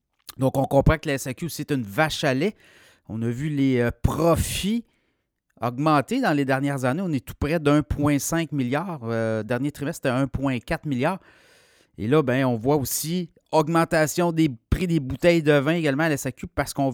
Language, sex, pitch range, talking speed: French, male, 130-155 Hz, 190 wpm